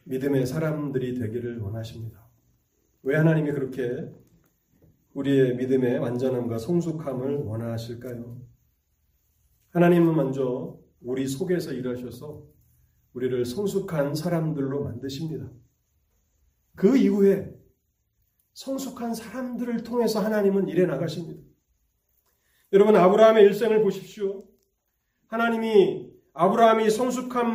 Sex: male